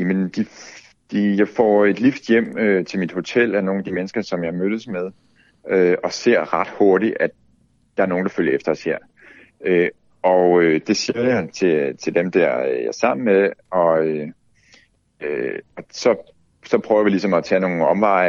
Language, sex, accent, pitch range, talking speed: Danish, male, native, 85-110 Hz, 200 wpm